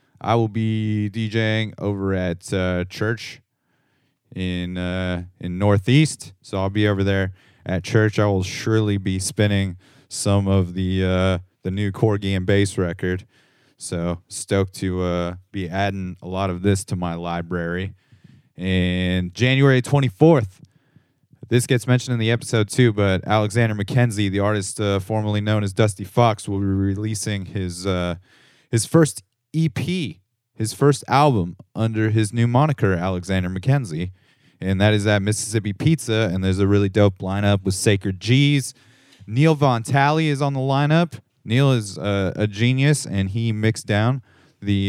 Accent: American